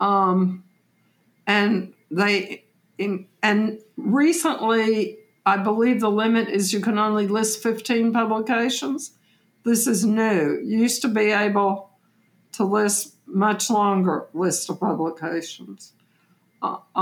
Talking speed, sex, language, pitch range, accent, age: 115 wpm, female, English, 195-240 Hz, American, 60-79